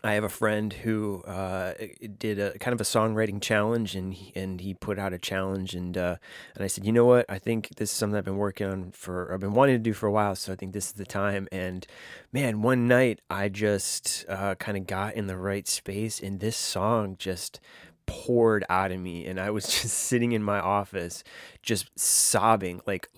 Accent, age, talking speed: American, 20-39, 215 wpm